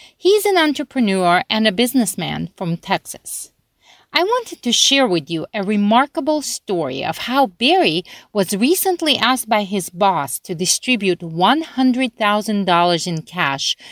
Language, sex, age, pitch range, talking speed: English, female, 40-59, 180-270 Hz, 145 wpm